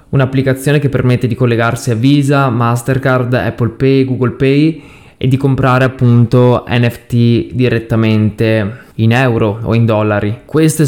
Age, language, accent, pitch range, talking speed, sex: 20-39, Italian, native, 110-130 Hz, 130 wpm, male